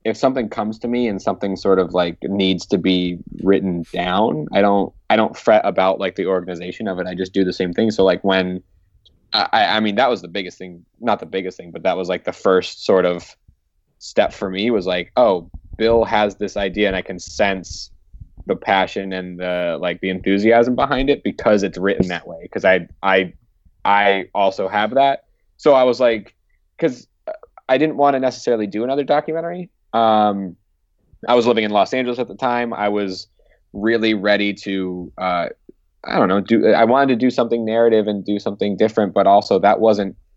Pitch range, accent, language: 95-110 Hz, American, English